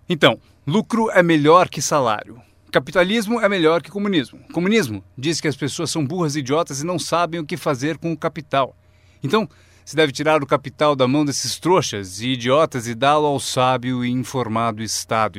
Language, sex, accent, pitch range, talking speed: Portuguese, male, Brazilian, 120-170 Hz, 185 wpm